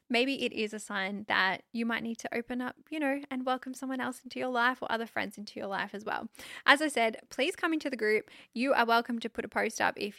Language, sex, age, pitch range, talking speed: English, female, 10-29, 215-260 Hz, 270 wpm